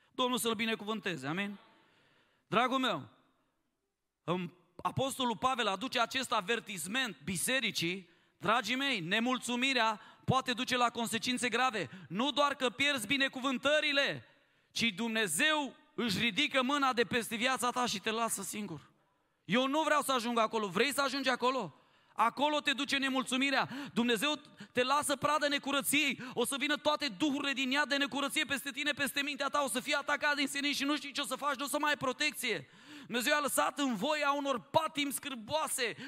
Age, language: 30-49, Romanian